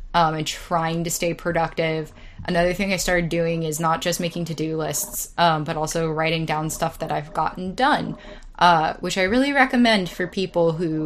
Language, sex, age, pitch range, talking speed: English, female, 10-29, 160-185 Hz, 190 wpm